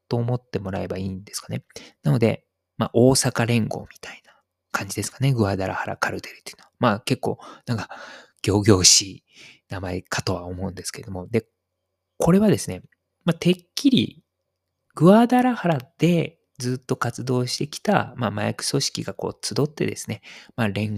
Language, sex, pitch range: Japanese, male, 100-145 Hz